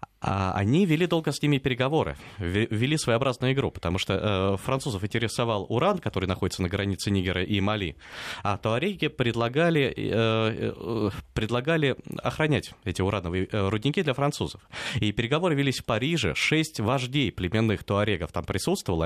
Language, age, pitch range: Russian, 20-39, 105-140 Hz